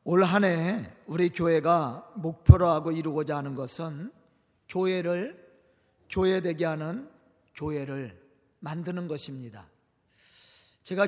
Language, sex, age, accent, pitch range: Korean, male, 40-59, native, 170-255 Hz